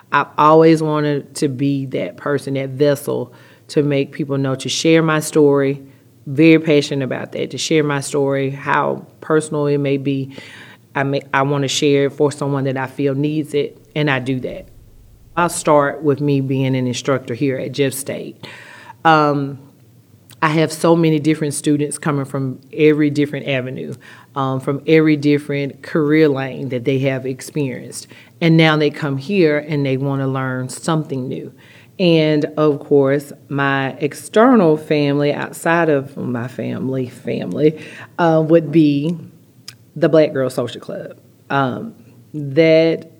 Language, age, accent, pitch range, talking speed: English, 40-59, American, 135-155 Hz, 155 wpm